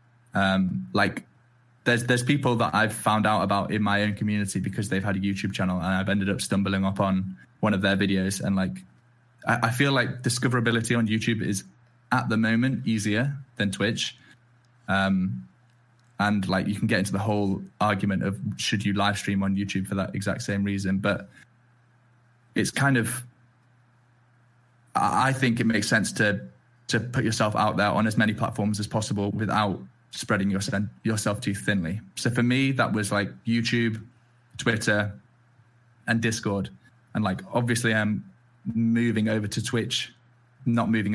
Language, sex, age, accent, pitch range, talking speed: English, male, 10-29, British, 100-120 Hz, 170 wpm